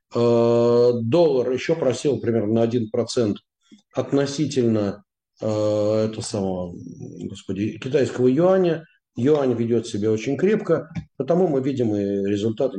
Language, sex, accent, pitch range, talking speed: Russian, male, native, 110-145 Hz, 105 wpm